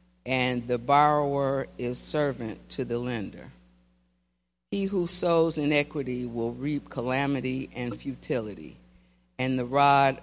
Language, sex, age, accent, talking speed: English, female, 50-69, American, 115 wpm